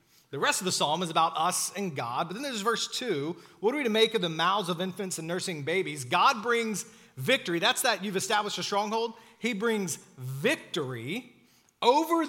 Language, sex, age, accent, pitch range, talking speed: English, male, 40-59, American, 155-230 Hz, 200 wpm